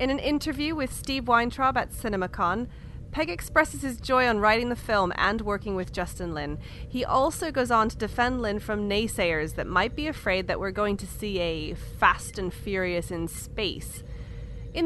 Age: 30-49